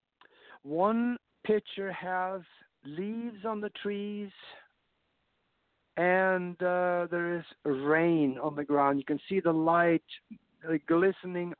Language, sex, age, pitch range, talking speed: English, male, 60-79, 145-180 Hz, 110 wpm